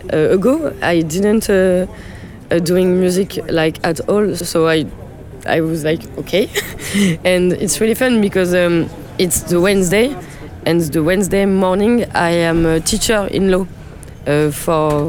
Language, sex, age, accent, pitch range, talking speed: French, female, 20-39, French, 130-180 Hz, 150 wpm